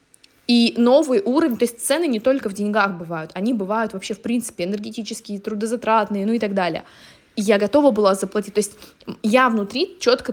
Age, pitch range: 20-39, 200-245 Hz